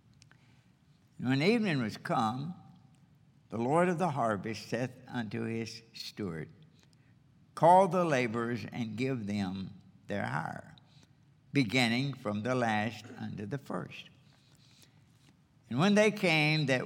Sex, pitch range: male, 120-150 Hz